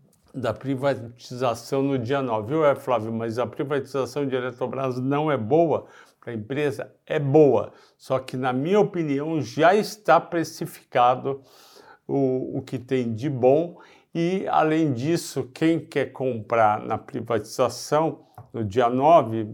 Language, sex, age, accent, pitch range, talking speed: Portuguese, male, 50-69, Brazilian, 125-145 Hz, 140 wpm